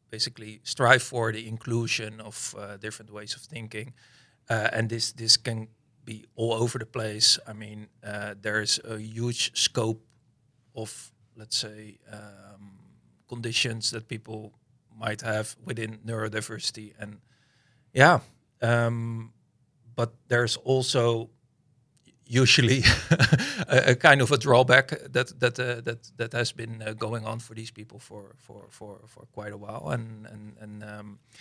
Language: English